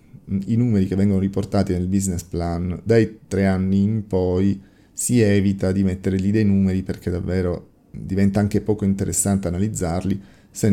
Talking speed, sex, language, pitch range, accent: 155 wpm, male, Italian, 95-105 Hz, native